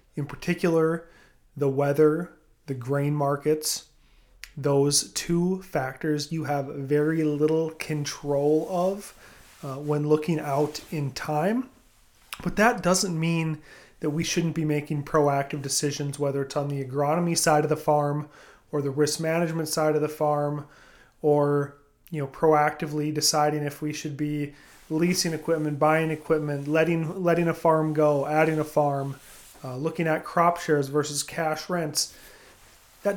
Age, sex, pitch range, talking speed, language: 30-49, male, 145-170 Hz, 145 wpm, English